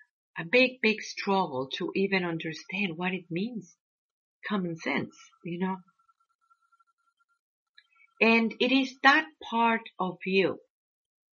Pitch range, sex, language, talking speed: 190-305 Hz, female, English, 110 wpm